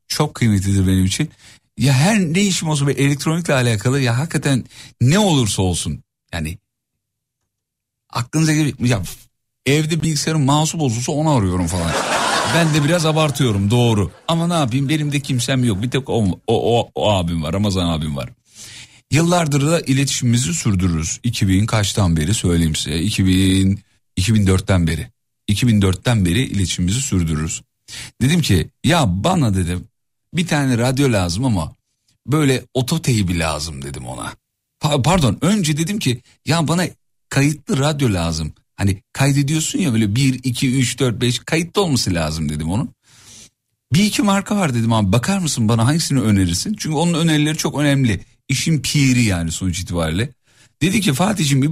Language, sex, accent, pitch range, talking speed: Turkish, male, native, 100-150 Hz, 150 wpm